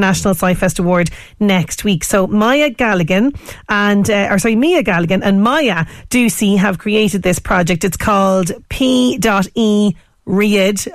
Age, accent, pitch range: 40-59, Irish, 190-225 Hz